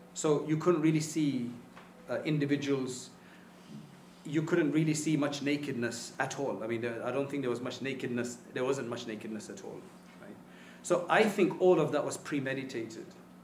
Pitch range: 130-160 Hz